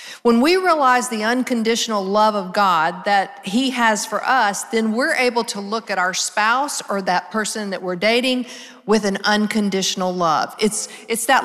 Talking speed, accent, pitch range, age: 180 wpm, American, 205-255 Hz, 50-69